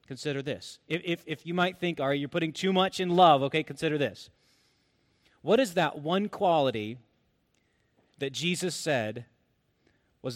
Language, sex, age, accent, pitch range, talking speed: English, male, 30-49, American, 135-175 Hz, 155 wpm